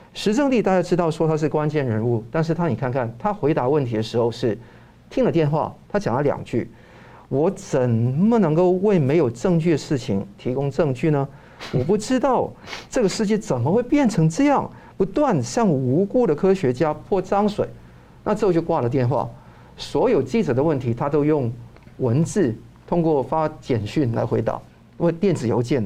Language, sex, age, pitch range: Chinese, male, 50-69, 120-175 Hz